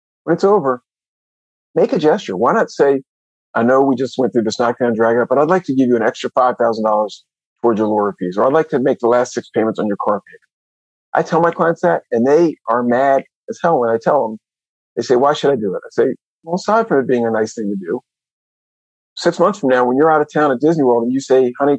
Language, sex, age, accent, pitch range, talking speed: English, male, 50-69, American, 110-140 Hz, 260 wpm